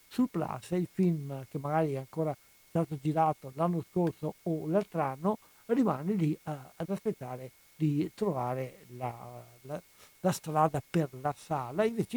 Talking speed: 145 wpm